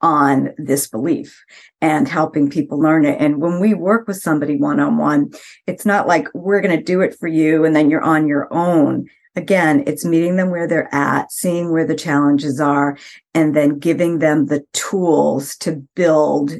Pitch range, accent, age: 150-185 Hz, American, 50-69